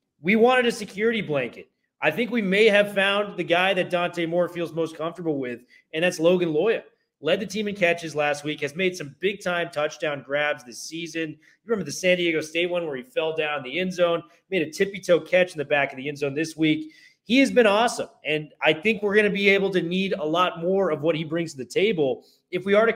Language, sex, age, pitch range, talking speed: English, male, 30-49, 155-195 Hz, 245 wpm